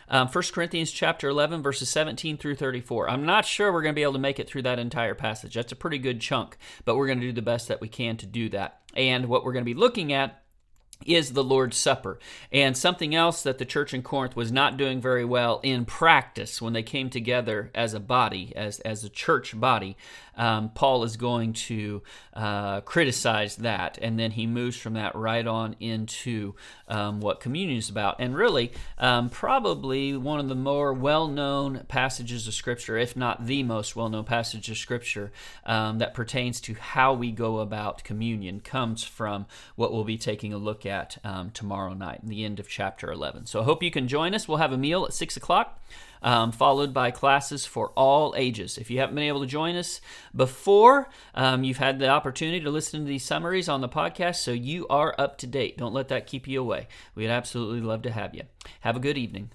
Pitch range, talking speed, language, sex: 110-140 Hz, 220 wpm, English, male